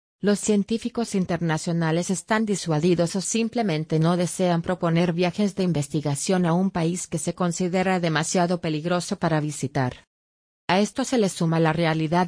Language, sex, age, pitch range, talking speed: English, female, 30-49, 160-190 Hz, 145 wpm